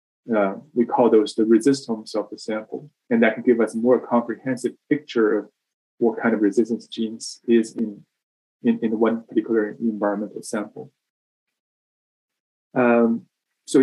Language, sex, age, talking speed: English, male, 20-39, 150 wpm